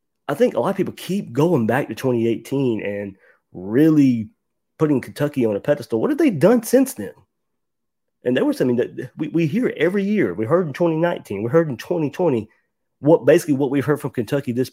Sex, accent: male, American